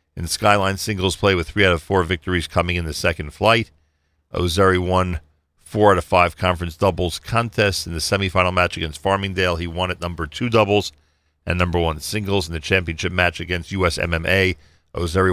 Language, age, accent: English, 40-59, American